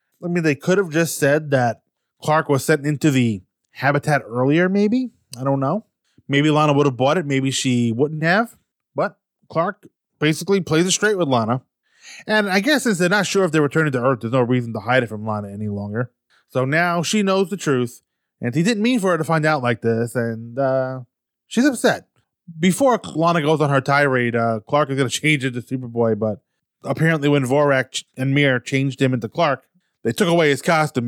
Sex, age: male, 20-39